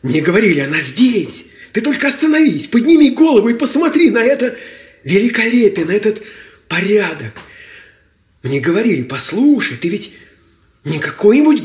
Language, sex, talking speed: Russian, male, 125 wpm